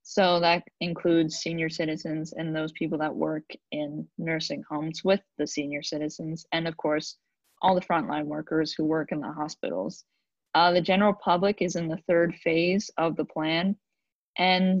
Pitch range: 165-185 Hz